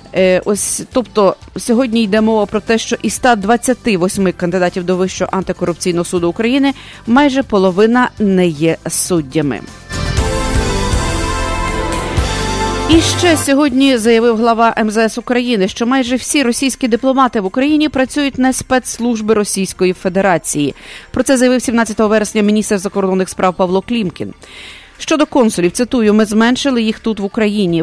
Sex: female